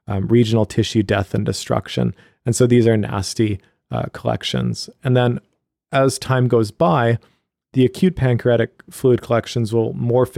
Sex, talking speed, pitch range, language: male, 150 wpm, 110-125 Hz, English